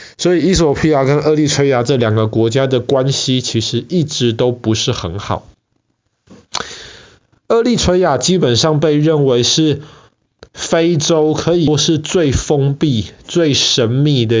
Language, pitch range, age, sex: Chinese, 115-145 Hz, 20-39, male